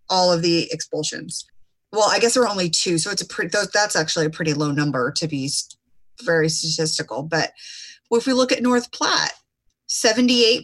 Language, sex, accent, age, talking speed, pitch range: English, female, American, 30-49, 185 wpm, 165-200 Hz